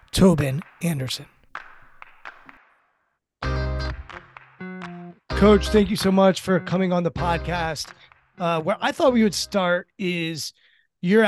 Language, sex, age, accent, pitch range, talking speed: English, male, 30-49, American, 160-190 Hz, 110 wpm